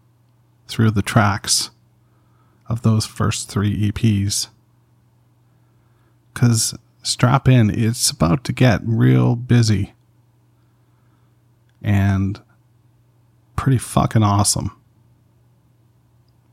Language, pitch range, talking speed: English, 105-120 Hz, 75 wpm